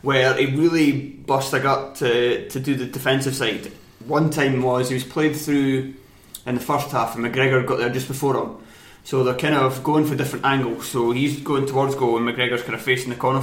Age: 20-39